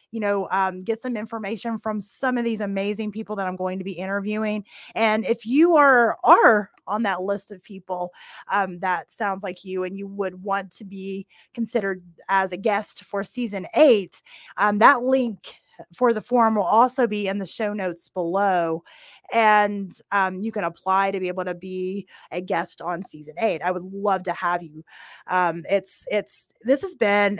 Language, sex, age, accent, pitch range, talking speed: English, female, 30-49, American, 180-210 Hz, 190 wpm